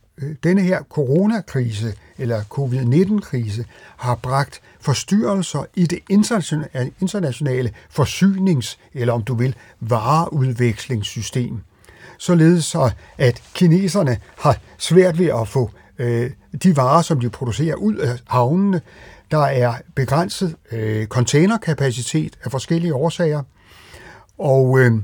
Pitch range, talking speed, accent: 125-175 Hz, 100 wpm, native